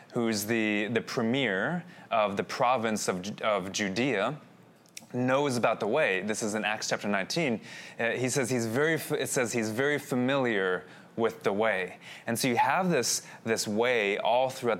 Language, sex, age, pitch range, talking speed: English, male, 20-39, 110-150 Hz, 170 wpm